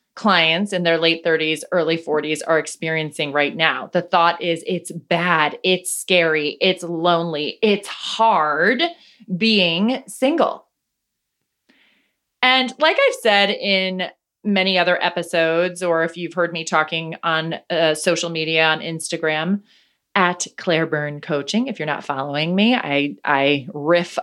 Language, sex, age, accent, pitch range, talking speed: English, female, 20-39, American, 160-205 Hz, 135 wpm